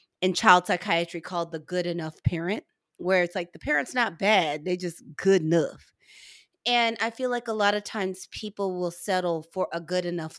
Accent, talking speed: American, 195 wpm